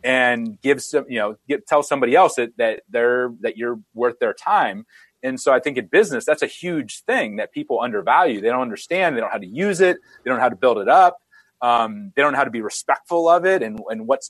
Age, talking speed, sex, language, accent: 30-49, 255 wpm, male, English, American